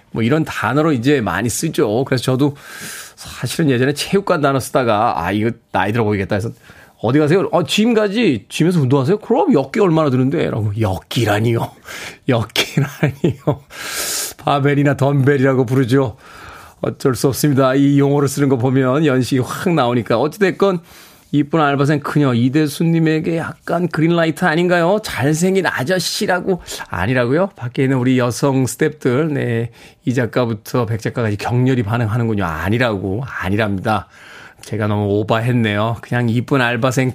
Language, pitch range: Korean, 120-160 Hz